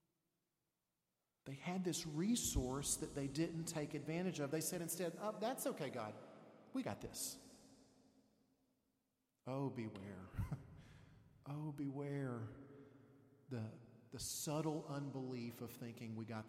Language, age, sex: English, 40-59, male